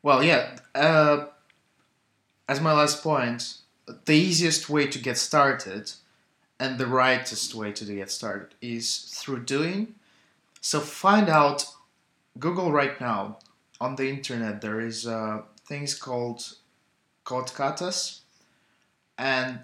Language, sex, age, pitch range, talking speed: English, male, 20-39, 115-150 Hz, 120 wpm